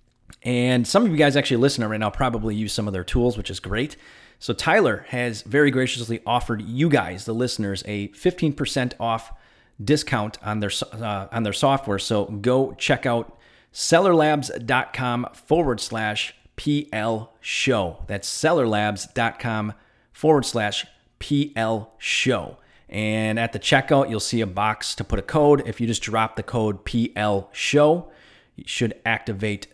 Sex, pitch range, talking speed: male, 105-125 Hz, 155 wpm